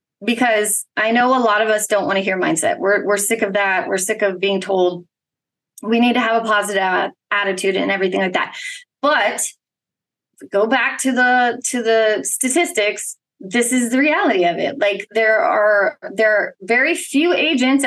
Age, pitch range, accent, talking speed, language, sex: 20-39, 215-285 Hz, American, 185 wpm, English, female